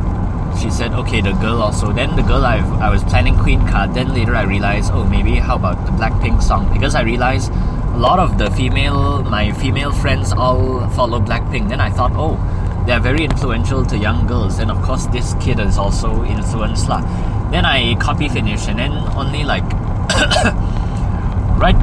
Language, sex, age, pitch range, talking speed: English, male, 20-39, 95-105 Hz, 185 wpm